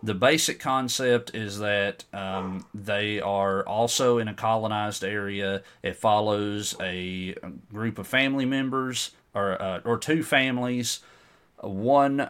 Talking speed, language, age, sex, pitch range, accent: 125 wpm, English, 40-59, male, 95-115 Hz, American